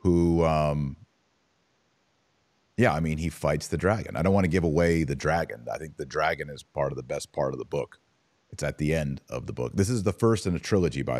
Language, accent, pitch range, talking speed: English, American, 80-110 Hz, 240 wpm